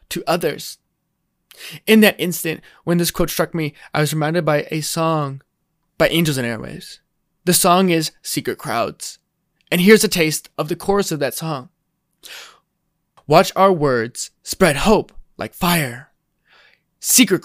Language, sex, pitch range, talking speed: English, male, 155-190 Hz, 150 wpm